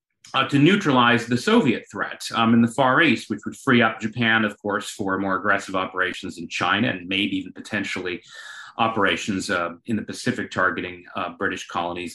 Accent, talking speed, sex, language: American, 185 wpm, male, English